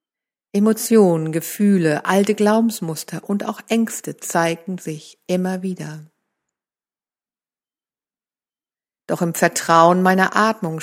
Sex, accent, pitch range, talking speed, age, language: female, German, 165-205 Hz, 90 wpm, 50-69, German